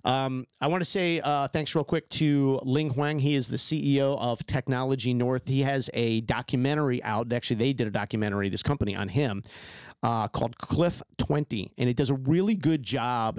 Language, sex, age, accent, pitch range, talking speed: English, male, 50-69, American, 115-140 Hz, 195 wpm